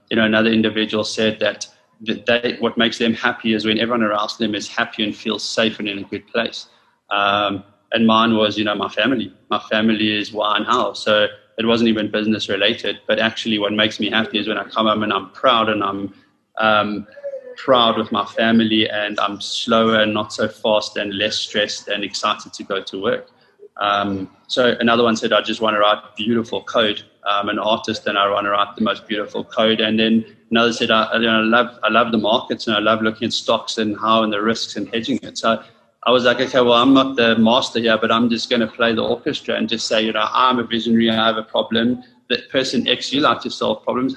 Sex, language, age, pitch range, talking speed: male, English, 20-39, 105-115 Hz, 235 wpm